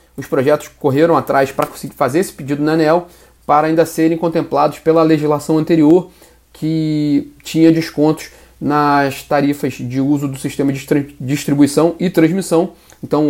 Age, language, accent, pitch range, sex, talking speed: 30-49, Portuguese, Brazilian, 140-165 Hz, male, 145 wpm